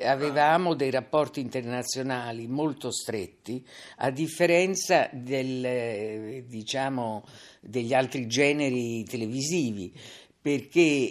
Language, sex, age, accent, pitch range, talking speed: Italian, female, 50-69, native, 115-150 Hz, 80 wpm